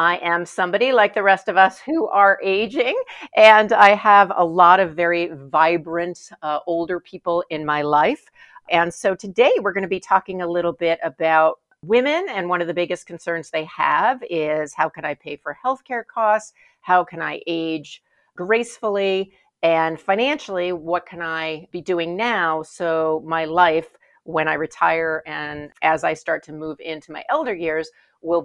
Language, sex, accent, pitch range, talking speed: English, female, American, 160-200 Hz, 175 wpm